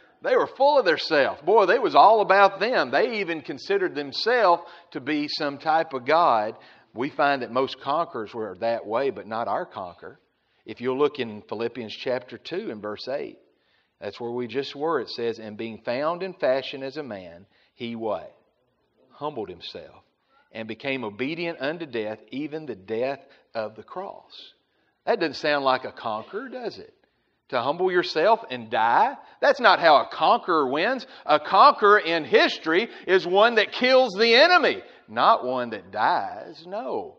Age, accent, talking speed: 40-59, American, 175 wpm